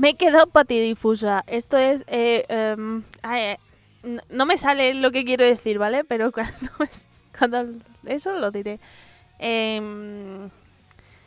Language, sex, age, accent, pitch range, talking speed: Spanish, female, 20-39, Spanish, 210-255 Hz, 135 wpm